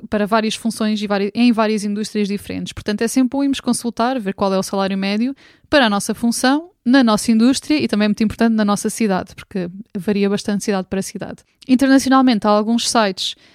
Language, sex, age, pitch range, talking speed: Portuguese, female, 20-39, 205-240 Hz, 195 wpm